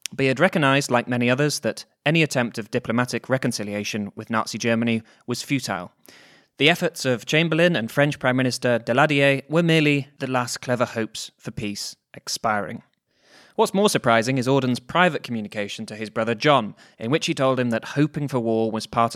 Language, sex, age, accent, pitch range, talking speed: English, male, 20-39, British, 115-140 Hz, 175 wpm